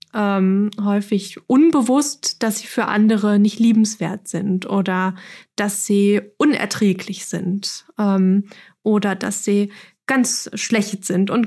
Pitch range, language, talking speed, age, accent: 205-240 Hz, German, 120 wpm, 20-39, German